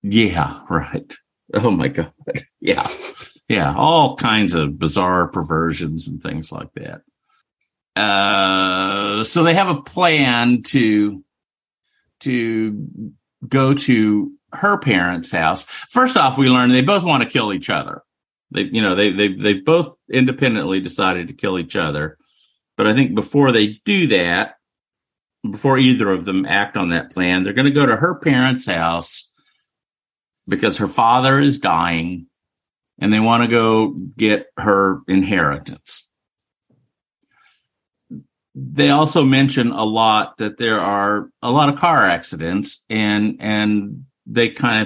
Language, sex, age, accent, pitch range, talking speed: English, male, 50-69, American, 100-135 Hz, 140 wpm